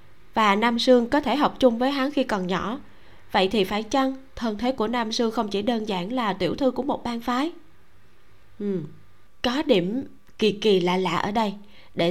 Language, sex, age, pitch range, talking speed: Vietnamese, female, 20-39, 195-255 Hz, 210 wpm